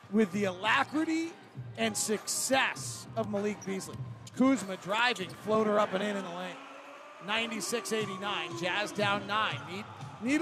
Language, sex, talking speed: English, male, 135 wpm